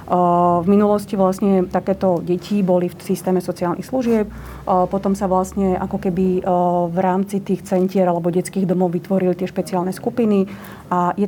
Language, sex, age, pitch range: Slovak, female, 40-59, 180-195 Hz